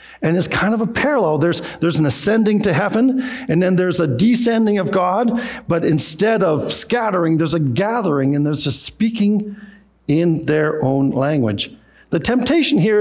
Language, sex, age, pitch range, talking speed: English, male, 50-69, 130-200 Hz, 170 wpm